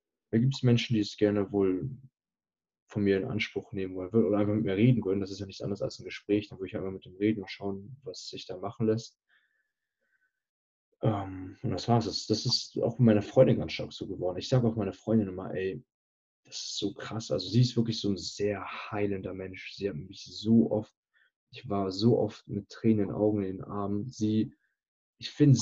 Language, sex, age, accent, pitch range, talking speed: German, male, 20-39, German, 100-120 Hz, 225 wpm